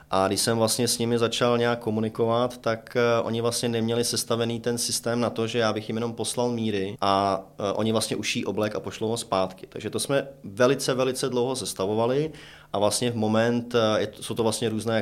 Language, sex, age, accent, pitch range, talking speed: Czech, male, 30-49, native, 100-120 Hz, 200 wpm